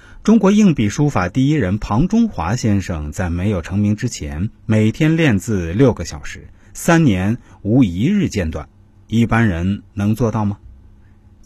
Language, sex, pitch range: Chinese, male, 95-125 Hz